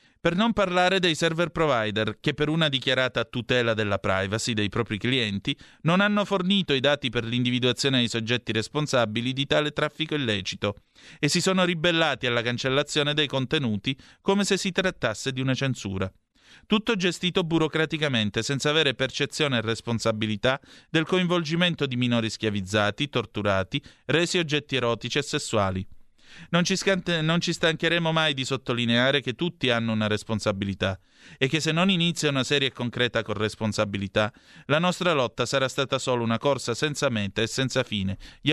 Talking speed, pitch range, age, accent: 155 wpm, 115-155 Hz, 30-49, native